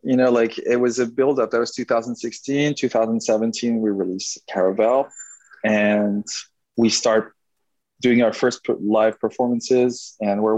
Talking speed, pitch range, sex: 135 wpm, 110-125 Hz, male